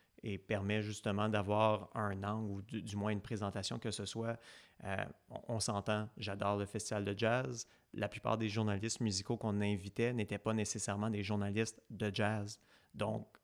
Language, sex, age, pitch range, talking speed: French, male, 30-49, 105-115 Hz, 165 wpm